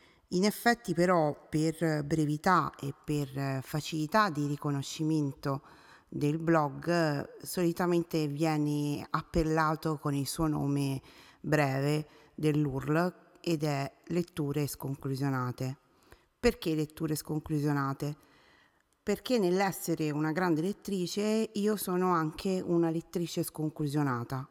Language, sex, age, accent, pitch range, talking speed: Italian, female, 40-59, native, 145-175 Hz, 95 wpm